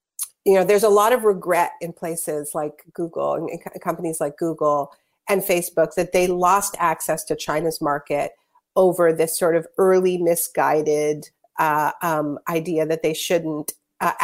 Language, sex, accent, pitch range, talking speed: English, female, American, 160-200 Hz, 155 wpm